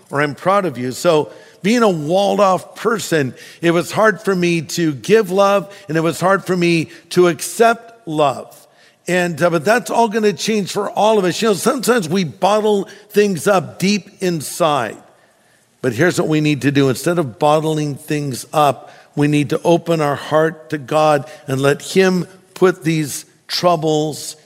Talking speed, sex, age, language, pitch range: 180 wpm, male, 50-69, English, 140-180 Hz